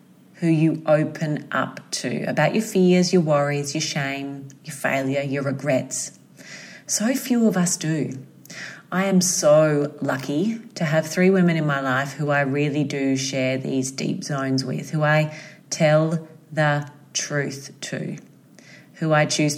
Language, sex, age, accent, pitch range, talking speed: English, female, 30-49, Australian, 145-180 Hz, 155 wpm